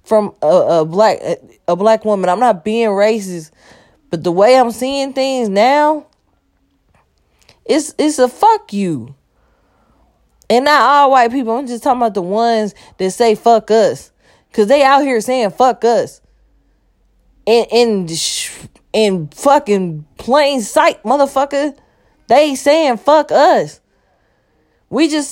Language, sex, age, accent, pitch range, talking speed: English, female, 10-29, American, 195-275 Hz, 135 wpm